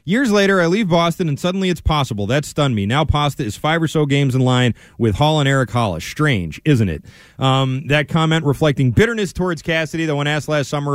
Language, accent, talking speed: English, American, 225 wpm